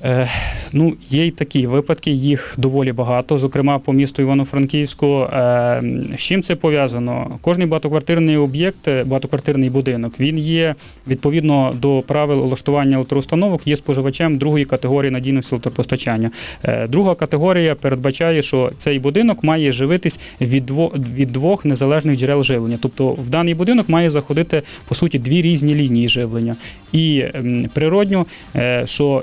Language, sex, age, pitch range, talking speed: Ukrainian, male, 20-39, 130-155 Hz, 145 wpm